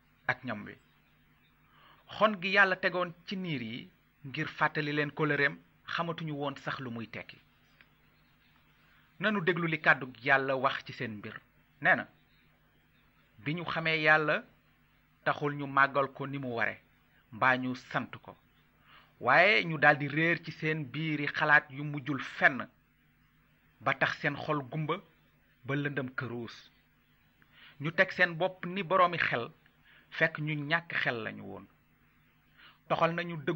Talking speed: 45 wpm